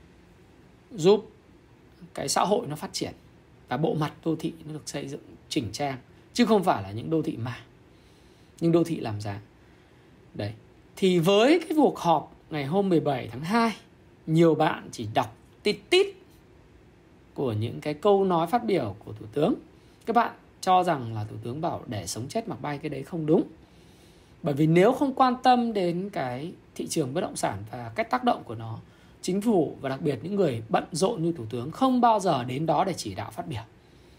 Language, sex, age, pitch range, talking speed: Vietnamese, male, 20-39, 125-195 Hz, 205 wpm